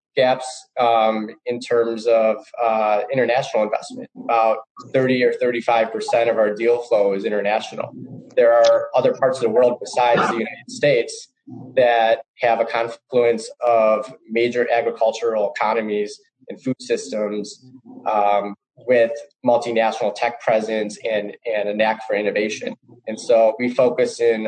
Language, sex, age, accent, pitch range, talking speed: English, male, 20-39, American, 110-135 Hz, 140 wpm